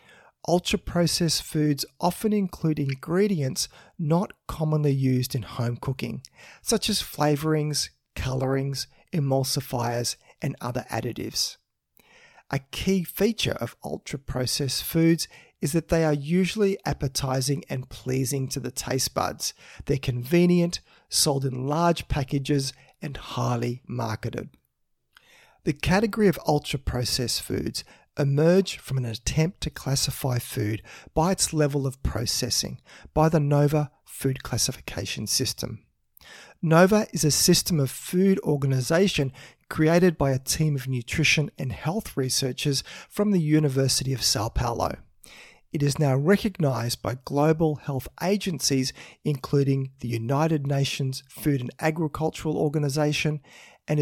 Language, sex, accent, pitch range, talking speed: English, male, Australian, 130-160 Hz, 120 wpm